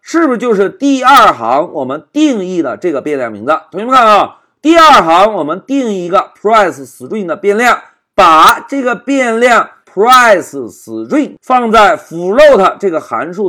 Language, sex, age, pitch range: Chinese, male, 50-69, 195-285 Hz